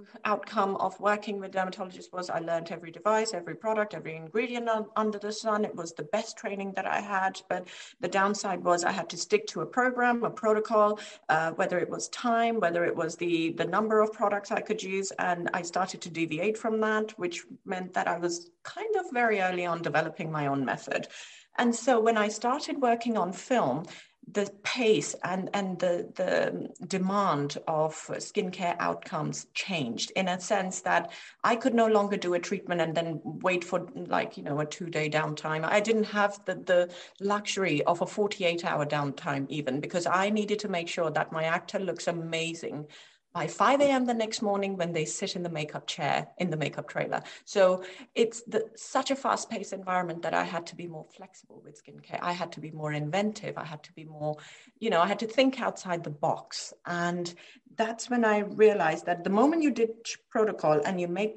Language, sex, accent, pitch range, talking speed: English, female, British, 170-220 Hz, 200 wpm